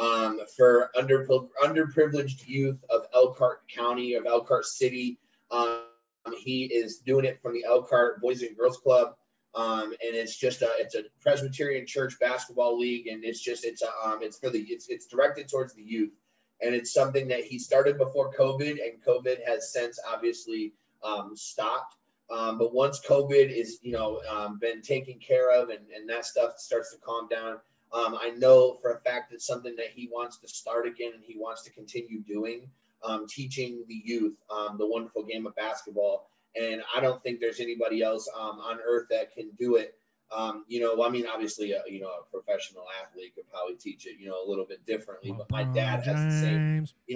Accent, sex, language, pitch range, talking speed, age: American, male, English, 110-135 Hz, 200 wpm, 20-39